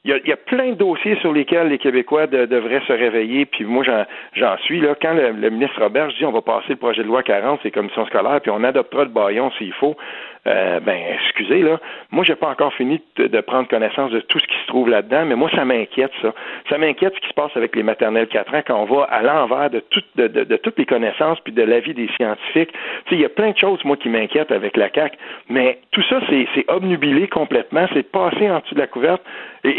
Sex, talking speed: male, 265 wpm